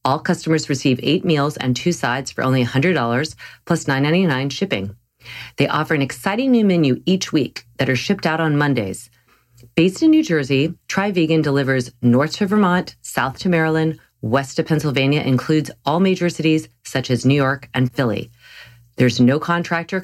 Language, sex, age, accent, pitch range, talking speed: English, female, 40-59, American, 125-160 Hz, 170 wpm